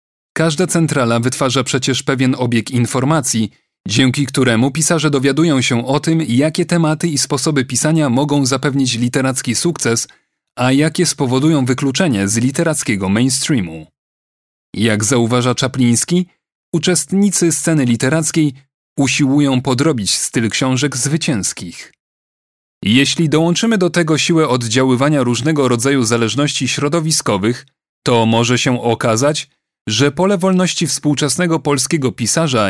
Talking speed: 110 wpm